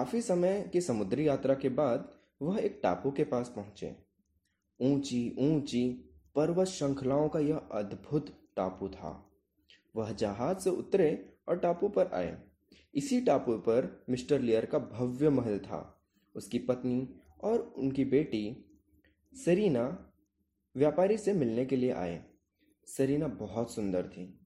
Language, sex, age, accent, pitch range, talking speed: Hindi, male, 20-39, native, 105-160 Hz, 130 wpm